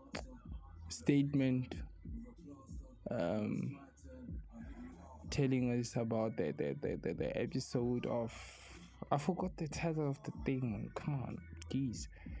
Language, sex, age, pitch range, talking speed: English, male, 20-39, 105-135 Hz, 105 wpm